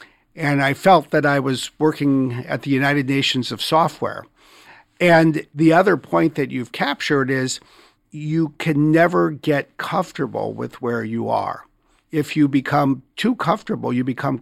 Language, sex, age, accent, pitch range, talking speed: English, male, 50-69, American, 130-165 Hz, 155 wpm